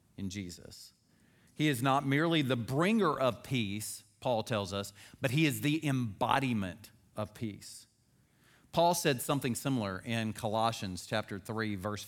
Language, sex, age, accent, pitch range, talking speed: English, male, 40-59, American, 105-135 Hz, 145 wpm